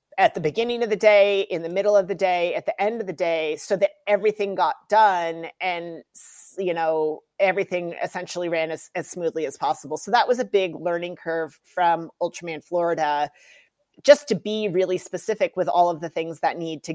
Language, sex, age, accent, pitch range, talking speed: English, female, 40-59, American, 170-205 Hz, 200 wpm